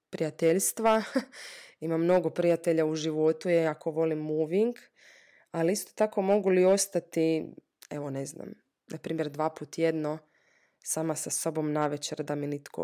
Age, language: 20-39, Croatian